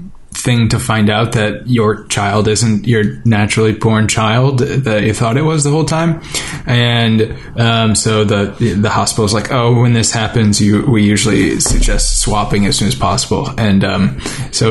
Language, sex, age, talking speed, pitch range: English, male, 20-39, 180 wpm, 105-115 Hz